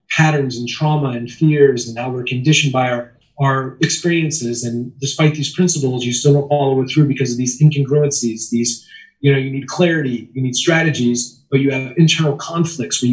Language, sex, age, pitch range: English, male, 30-49, 135-170 Hz